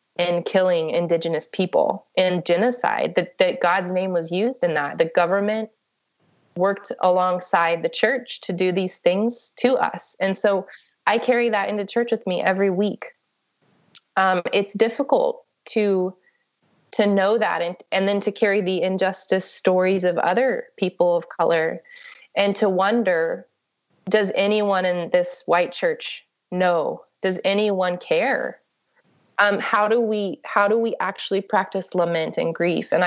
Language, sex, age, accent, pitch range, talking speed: English, female, 20-39, American, 180-215 Hz, 150 wpm